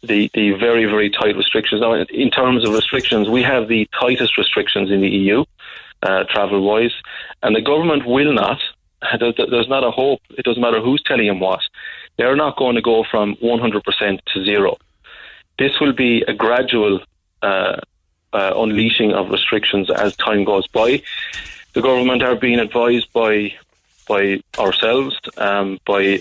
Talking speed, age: 165 wpm, 30-49